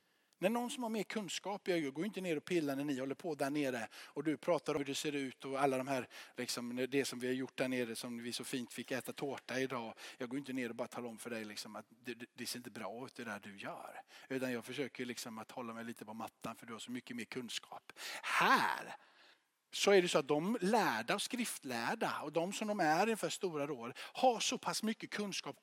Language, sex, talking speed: Swedish, male, 255 wpm